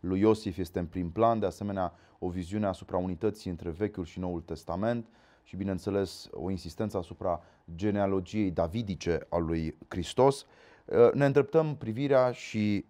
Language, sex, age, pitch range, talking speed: Romanian, male, 30-49, 95-120 Hz, 145 wpm